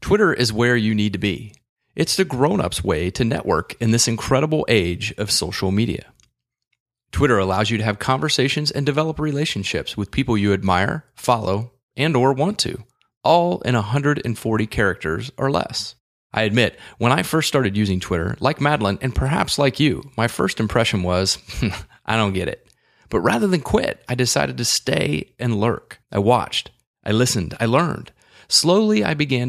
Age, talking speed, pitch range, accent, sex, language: 30-49, 175 wpm, 105-135 Hz, American, male, English